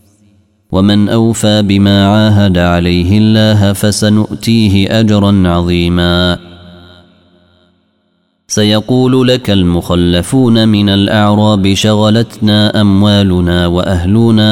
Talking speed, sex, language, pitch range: 70 wpm, male, Arabic, 95-105 Hz